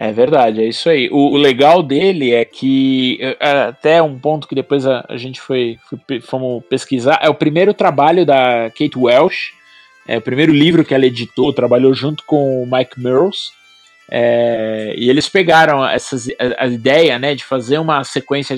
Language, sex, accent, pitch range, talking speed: Portuguese, male, Brazilian, 130-165 Hz, 170 wpm